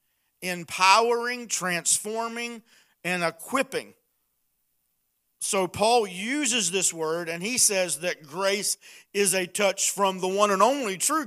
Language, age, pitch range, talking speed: English, 50-69, 170-220 Hz, 120 wpm